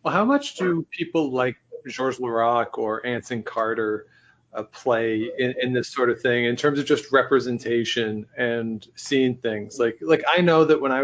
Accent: American